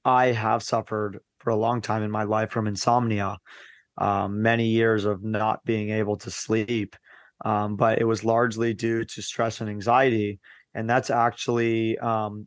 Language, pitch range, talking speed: English, 110-130 Hz, 170 wpm